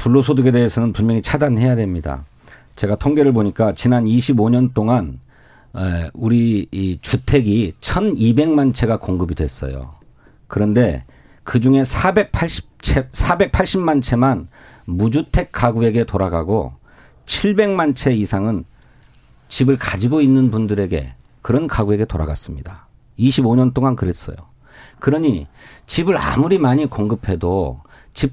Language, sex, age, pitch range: Korean, male, 40-59, 105-145 Hz